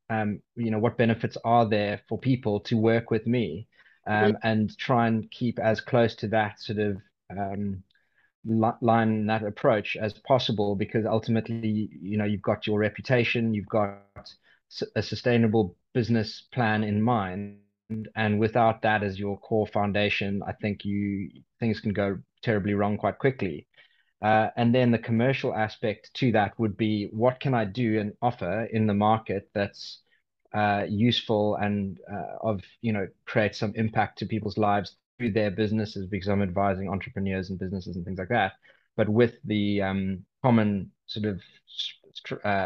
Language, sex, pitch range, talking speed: English, male, 100-115 Hz, 165 wpm